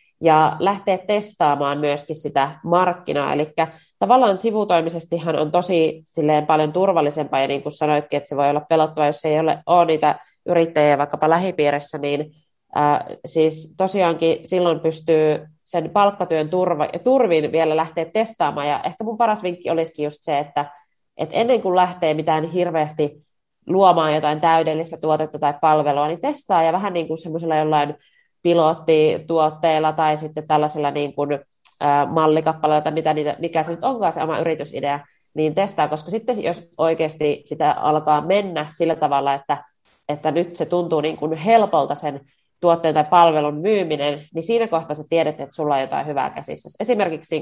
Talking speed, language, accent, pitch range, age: 155 wpm, Finnish, native, 150-170 Hz, 30-49